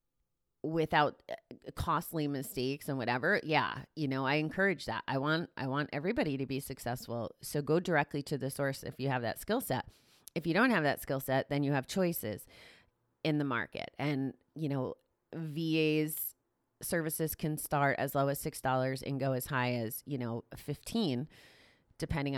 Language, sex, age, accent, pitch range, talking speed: English, female, 30-49, American, 130-160 Hz, 175 wpm